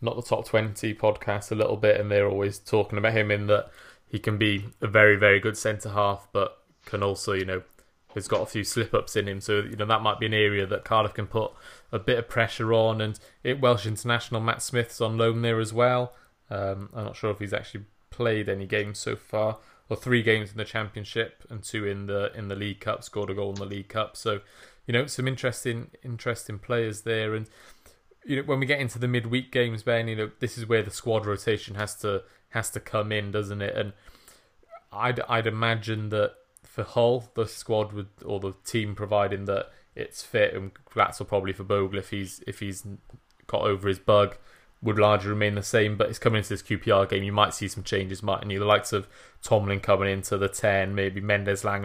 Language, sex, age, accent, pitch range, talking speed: English, male, 20-39, British, 100-115 Hz, 225 wpm